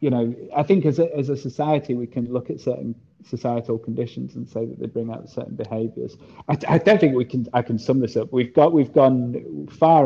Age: 30-49